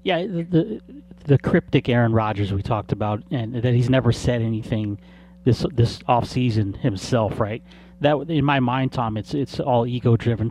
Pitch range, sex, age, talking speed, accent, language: 110-150 Hz, male, 30-49, 175 wpm, American, English